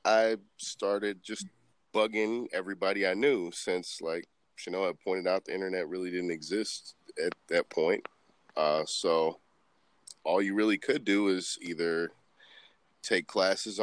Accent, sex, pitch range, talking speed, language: American, male, 90-115 Hz, 145 wpm, English